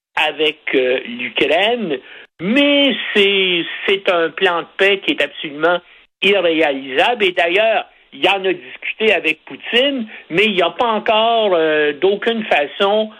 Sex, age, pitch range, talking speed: male, 60-79, 150-225 Hz, 140 wpm